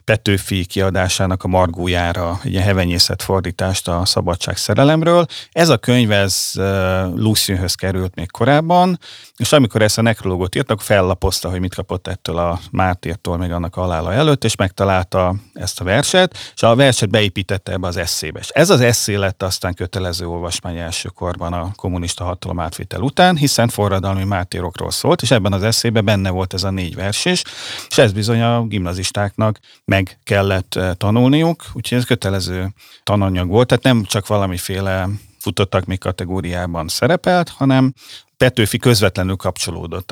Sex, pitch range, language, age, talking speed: male, 90-115 Hz, Hungarian, 30-49, 150 wpm